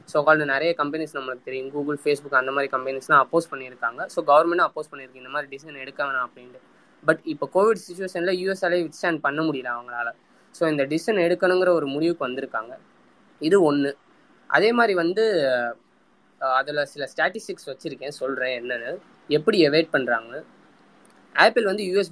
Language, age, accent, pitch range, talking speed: Tamil, 20-39, native, 135-180 Hz, 155 wpm